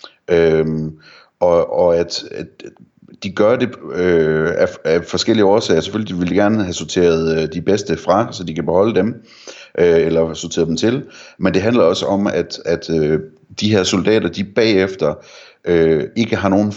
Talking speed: 180 wpm